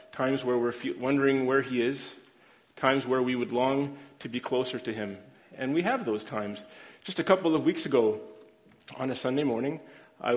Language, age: English, 30-49